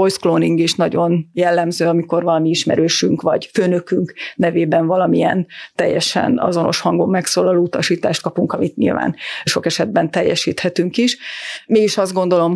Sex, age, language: female, 30-49, Hungarian